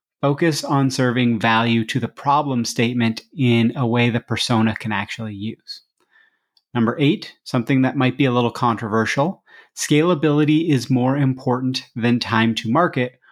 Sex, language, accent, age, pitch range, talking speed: male, English, American, 30-49, 115-145 Hz, 150 wpm